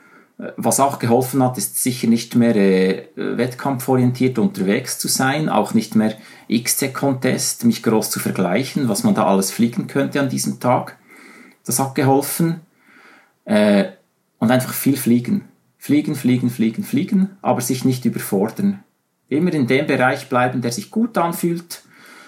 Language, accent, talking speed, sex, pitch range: German, Austrian, 150 wpm, male, 120-175 Hz